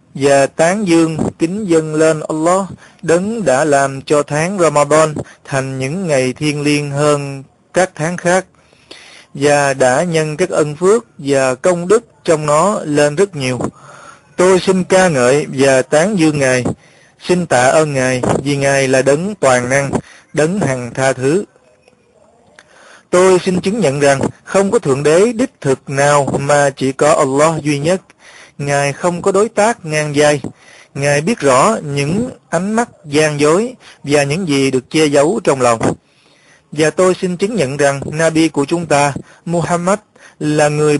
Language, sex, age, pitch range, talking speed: Vietnamese, male, 20-39, 140-180 Hz, 165 wpm